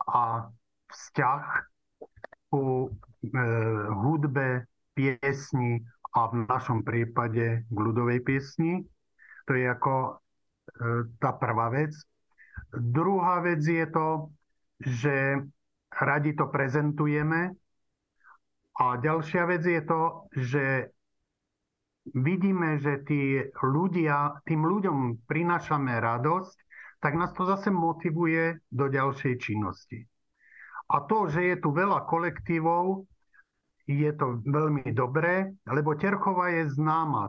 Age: 50-69